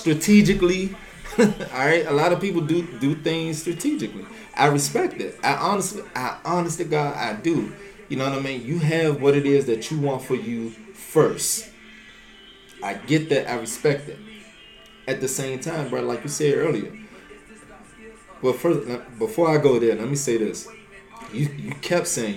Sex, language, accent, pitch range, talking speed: male, English, American, 130-180 Hz, 175 wpm